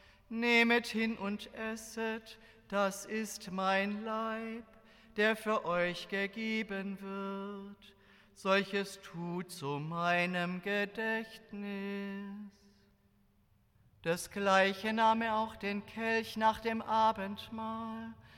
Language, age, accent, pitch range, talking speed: German, 40-59, German, 195-225 Hz, 90 wpm